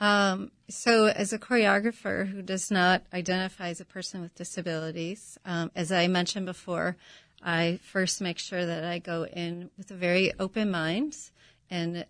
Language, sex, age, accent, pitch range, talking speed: English, female, 30-49, American, 175-215 Hz, 165 wpm